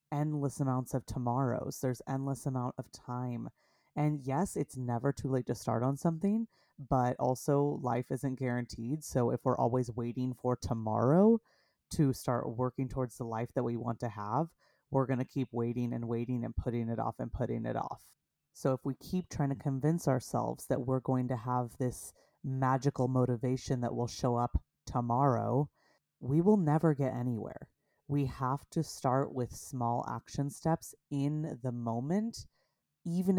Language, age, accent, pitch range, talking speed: English, 30-49, American, 120-145 Hz, 170 wpm